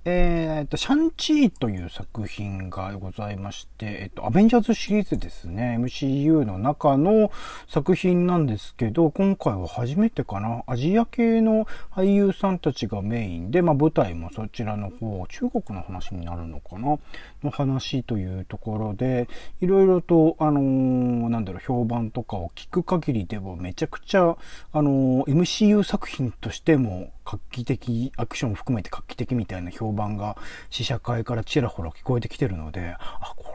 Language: Japanese